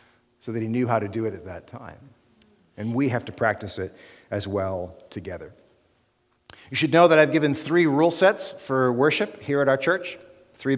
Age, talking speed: 50-69, 200 wpm